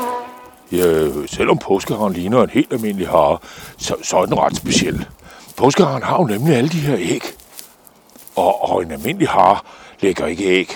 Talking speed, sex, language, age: 160 wpm, male, Danish, 60-79